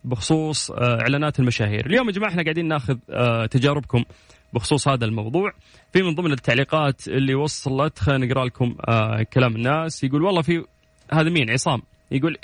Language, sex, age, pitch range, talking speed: Arabic, male, 30-49, 130-175 Hz, 150 wpm